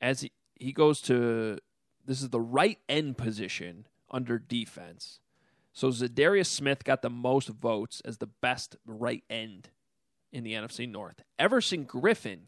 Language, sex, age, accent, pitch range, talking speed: English, male, 30-49, American, 125-175 Hz, 150 wpm